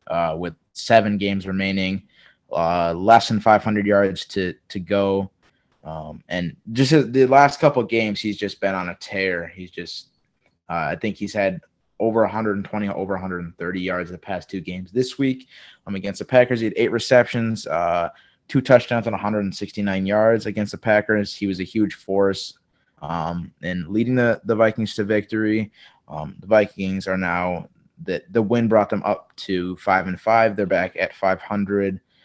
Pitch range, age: 95-115 Hz, 20-39